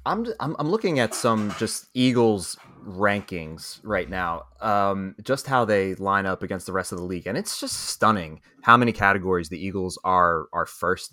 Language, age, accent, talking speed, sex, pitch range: English, 20-39, American, 190 wpm, male, 95-125 Hz